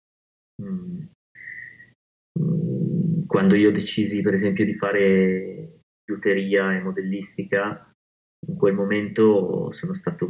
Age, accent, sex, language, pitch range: 30-49, native, male, Italian, 95-155 Hz